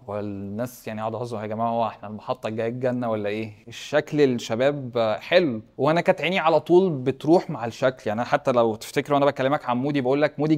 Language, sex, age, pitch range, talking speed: Arabic, male, 20-39, 120-155 Hz, 200 wpm